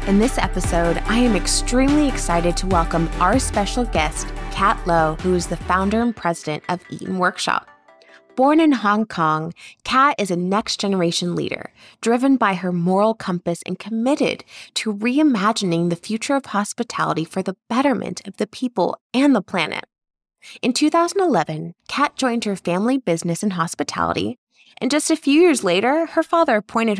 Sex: female